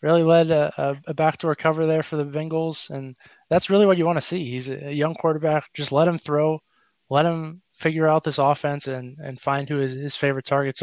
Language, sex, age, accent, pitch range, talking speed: English, male, 20-39, American, 140-160 Hz, 220 wpm